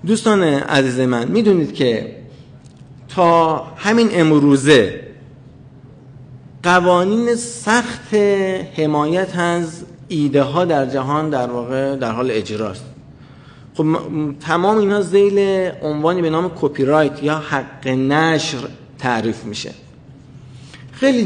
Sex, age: male, 50-69